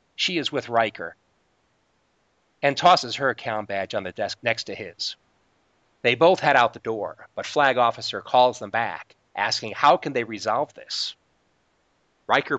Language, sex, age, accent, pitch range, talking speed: English, male, 40-59, American, 110-160 Hz, 160 wpm